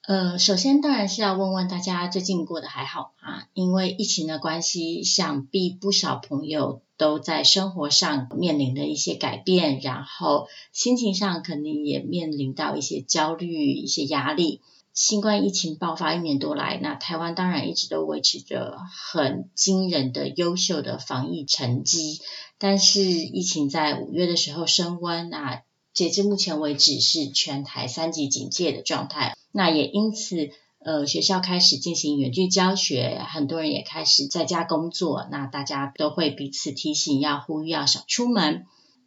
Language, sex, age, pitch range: Chinese, female, 30-49, 150-200 Hz